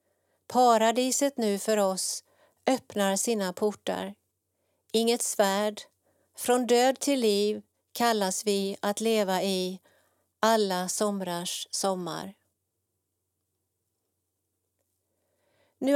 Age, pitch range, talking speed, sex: 40-59, 185-235 Hz, 85 wpm, female